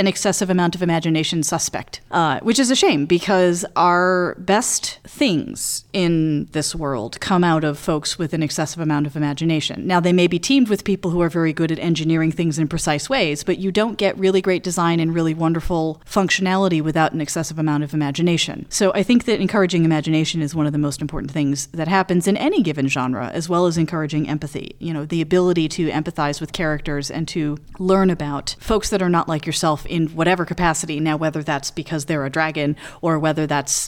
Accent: American